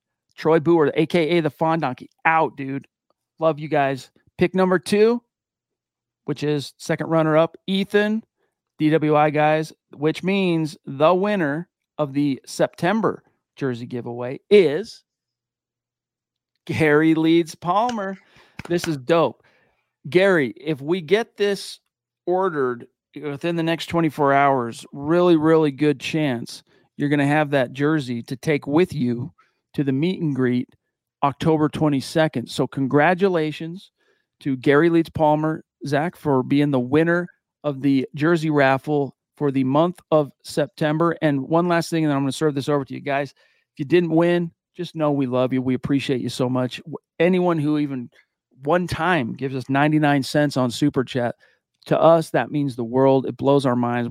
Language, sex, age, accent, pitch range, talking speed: English, male, 40-59, American, 135-165 Hz, 155 wpm